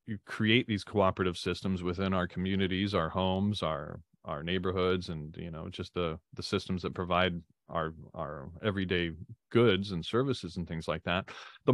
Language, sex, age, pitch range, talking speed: English, male, 30-49, 85-105 Hz, 165 wpm